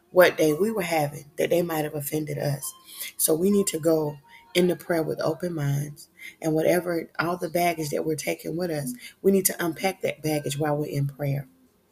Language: English